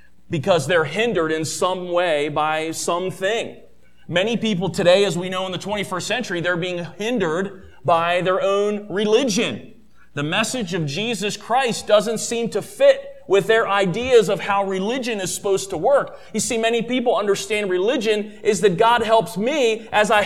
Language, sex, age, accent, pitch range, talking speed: English, male, 30-49, American, 140-215 Hz, 170 wpm